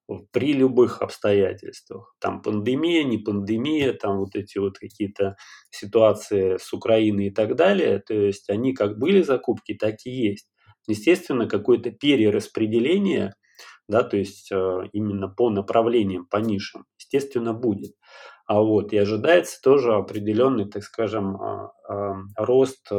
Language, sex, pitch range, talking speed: Russian, male, 100-125 Hz, 130 wpm